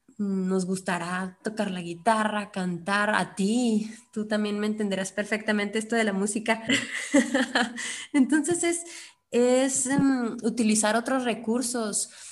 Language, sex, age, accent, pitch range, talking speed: Spanish, female, 20-39, Mexican, 200-240 Hz, 110 wpm